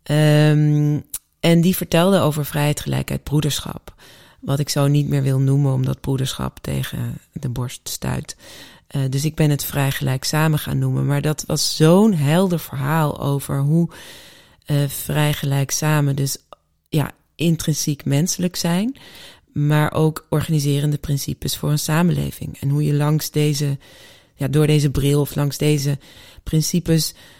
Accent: Dutch